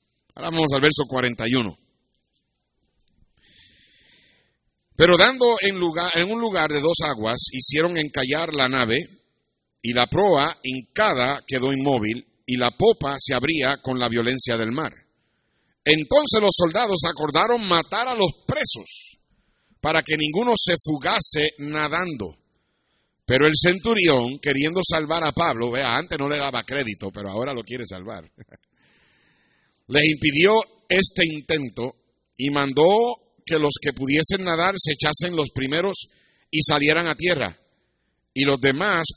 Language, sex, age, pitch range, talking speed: Spanish, male, 50-69, 120-165 Hz, 135 wpm